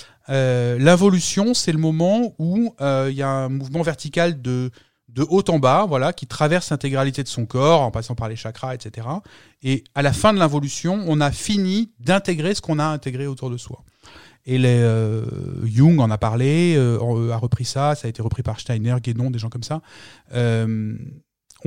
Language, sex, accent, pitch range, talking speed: French, male, French, 120-160 Hz, 195 wpm